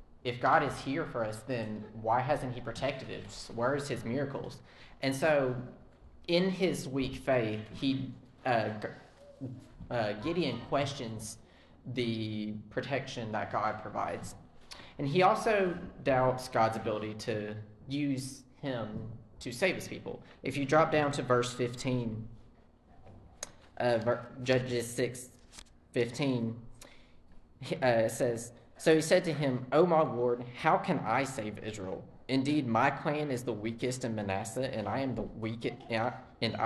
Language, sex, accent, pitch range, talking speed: English, male, American, 110-135 Hz, 145 wpm